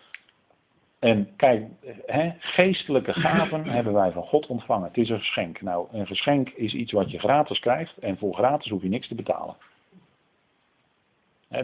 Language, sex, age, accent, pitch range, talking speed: Dutch, male, 50-69, Dutch, 105-170 Hz, 165 wpm